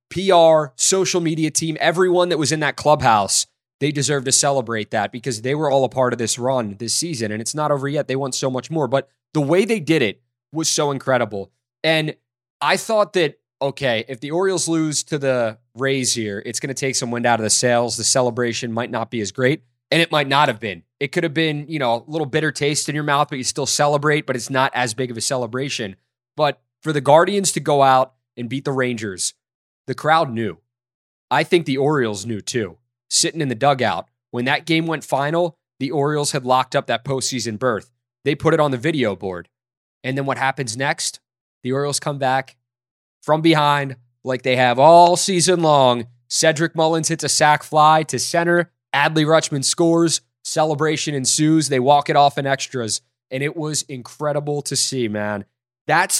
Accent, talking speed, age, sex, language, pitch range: American, 205 wpm, 20-39, male, English, 120-155 Hz